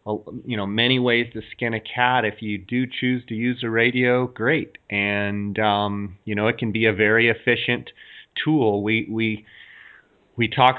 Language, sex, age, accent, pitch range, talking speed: English, male, 30-49, American, 105-120 Hz, 180 wpm